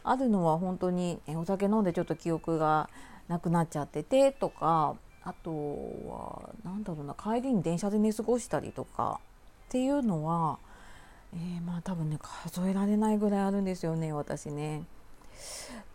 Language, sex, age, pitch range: Japanese, female, 30-49, 160-215 Hz